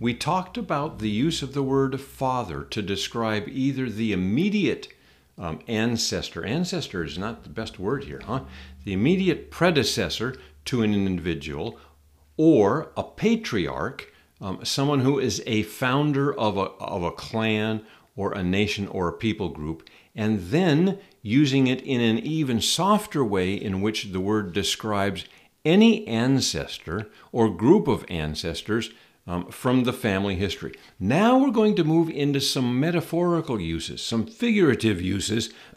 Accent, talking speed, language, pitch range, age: American, 145 wpm, English, 100-145 Hz, 50-69